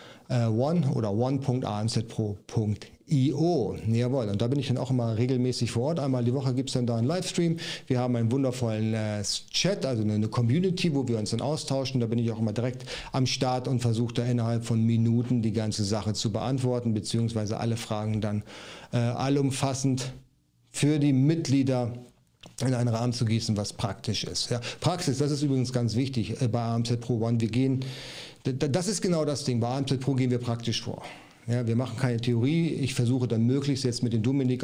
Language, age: German, 40-59